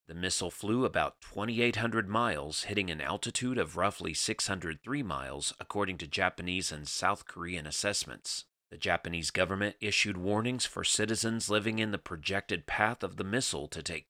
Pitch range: 85-105 Hz